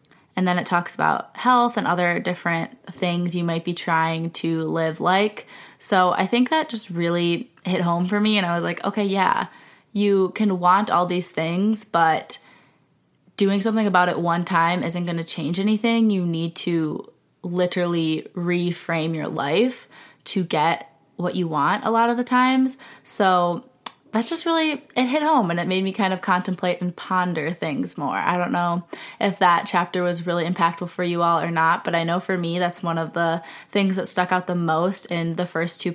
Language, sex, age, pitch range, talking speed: English, female, 20-39, 170-205 Hz, 200 wpm